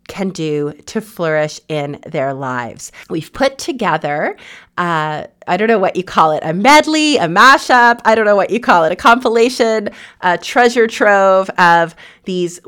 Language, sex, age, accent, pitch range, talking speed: English, female, 30-49, American, 175-225 Hz, 170 wpm